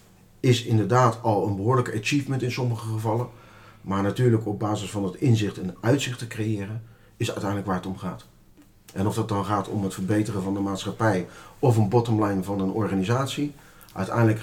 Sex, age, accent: male, 40-59, Dutch